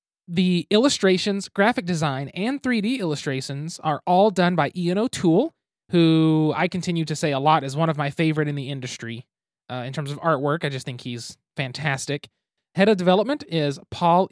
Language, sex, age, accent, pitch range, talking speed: English, male, 20-39, American, 145-200 Hz, 180 wpm